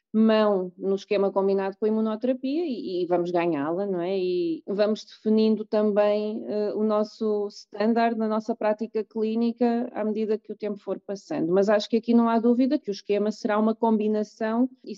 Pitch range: 190-225 Hz